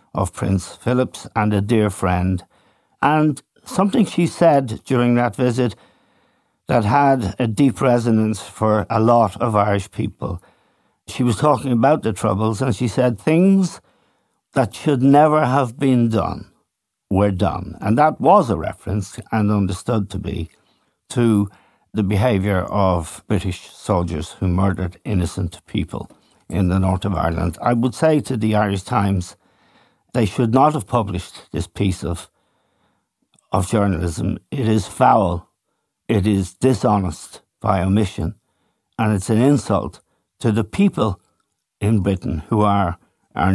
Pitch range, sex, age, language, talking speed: 95-125 Hz, male, 60-79, English, 145 wpm